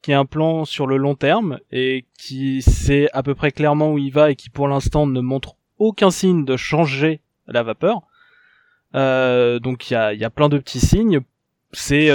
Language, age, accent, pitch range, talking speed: French, 20-39, French, 130-165 Hz, 205 wpm